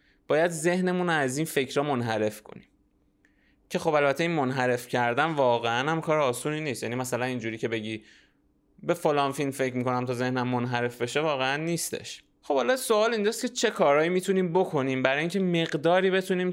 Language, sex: Persian, male